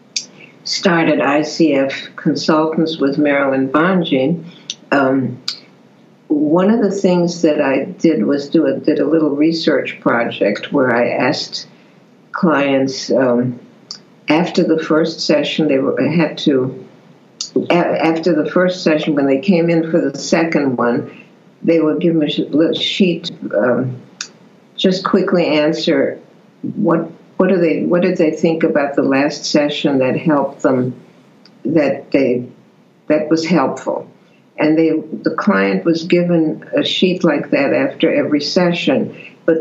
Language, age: English, 60-79